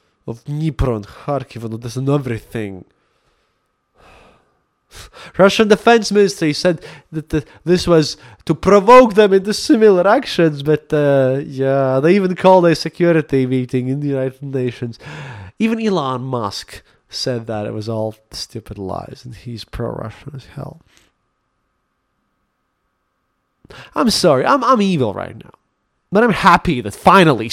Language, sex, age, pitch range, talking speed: English, male, 20-39, 120-185 Hz, 130 wpm